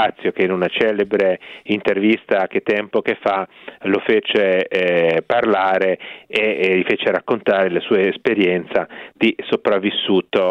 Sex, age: male, 40-59